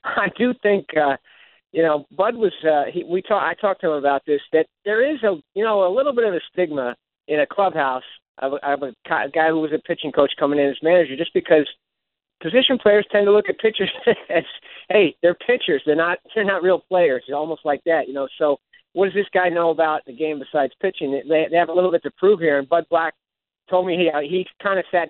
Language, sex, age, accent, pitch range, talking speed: English, male, 50-69, American, 145-180 Hz, 240 wpm